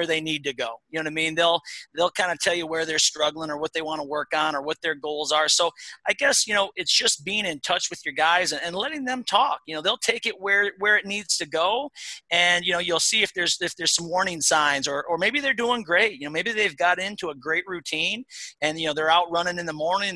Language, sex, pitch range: English, male, 150-185 Hz